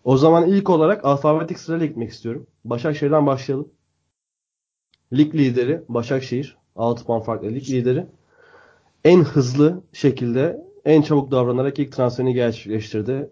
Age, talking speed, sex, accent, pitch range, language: 30-49, 120 wpm, male, native, 115-145 Hz, Turkish